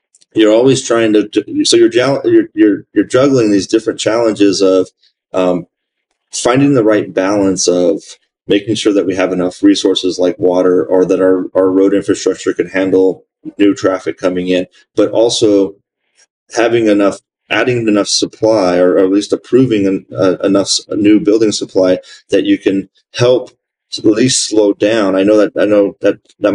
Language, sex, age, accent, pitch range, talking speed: English, male, 30-49, American, 95-115 Hz, 165 wpm